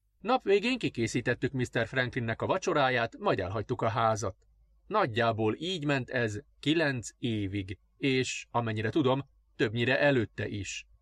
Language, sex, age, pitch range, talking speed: Hungarian, male, 30-49, 110-145 Hz, 125 wpm